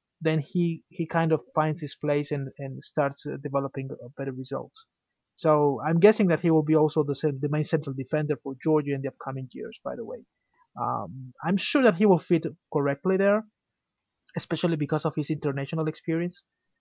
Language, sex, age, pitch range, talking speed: English, male, 30-49, 140-165 Hz, 180 wpm